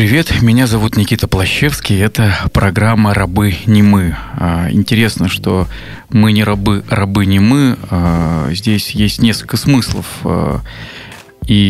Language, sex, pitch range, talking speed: Russian, male, 100-125 Hz, 120 wpm